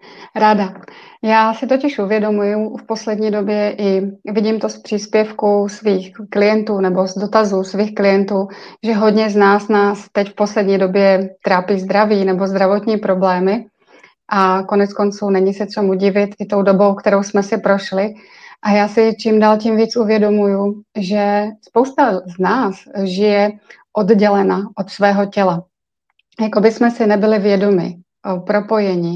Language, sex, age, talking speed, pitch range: Czech, female, 30-49, 150 wpm, 195-215 Hz